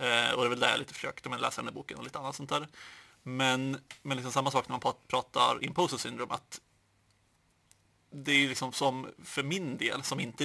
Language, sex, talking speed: Swedish, male, 215 wpm